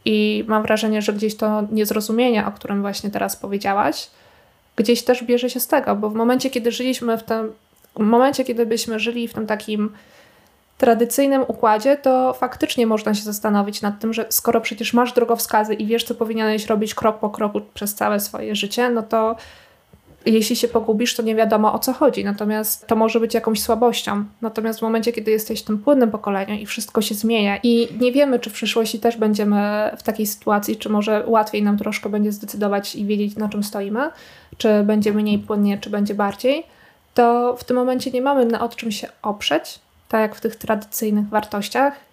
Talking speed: 190 wpm